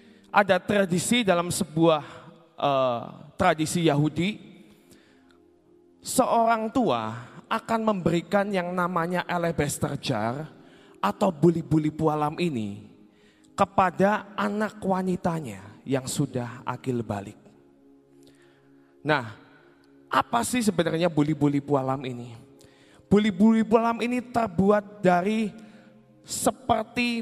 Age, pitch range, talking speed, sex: 20-39, 150-215 Hz, 85 wpm, male